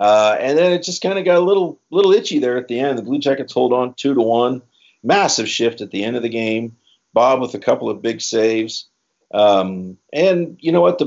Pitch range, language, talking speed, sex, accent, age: 95-125 Hz, English, 245 wpm, male, American, 50-69